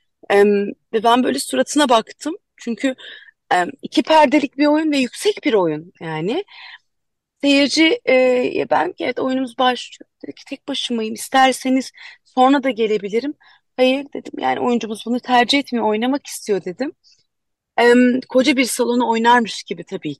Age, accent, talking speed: 30-49, native, 140 wpm